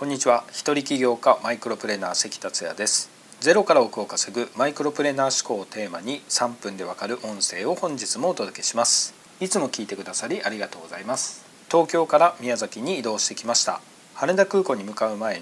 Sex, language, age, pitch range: male, Japanese, 40-59, 115-180 Hz